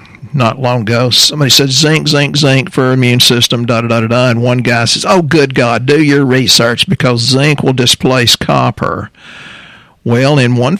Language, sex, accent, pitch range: English, male, American, 120-145 Hz